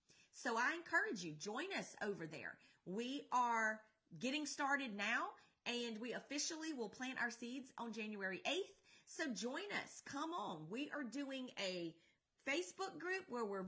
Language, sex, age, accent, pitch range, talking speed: English, female, 30-49, American, 210-290 Hz, 160 wpm